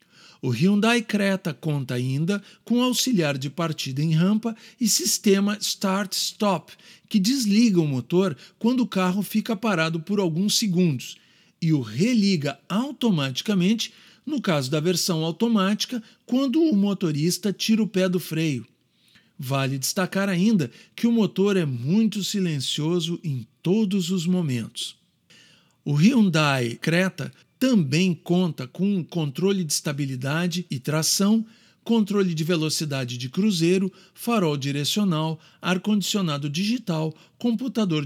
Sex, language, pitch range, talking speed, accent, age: male, Portuguese, 160-210 Hz, 120 wpm, Brazilian, 50-69